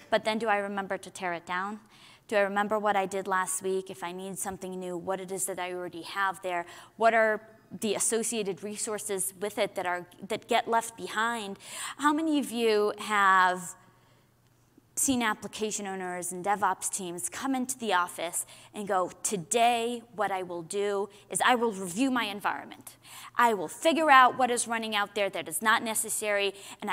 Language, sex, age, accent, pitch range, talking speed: English, female, 20-39, American, 190-245 Hz, 185 wpm